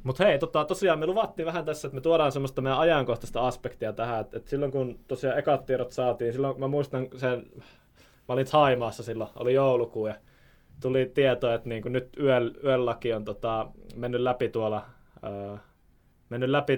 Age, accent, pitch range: 20-39, native, 115-135 Hz